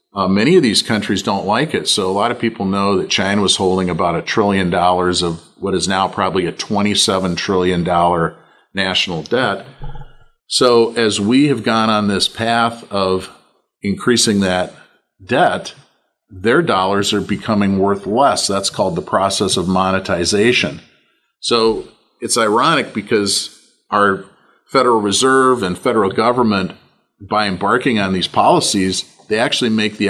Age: 40-59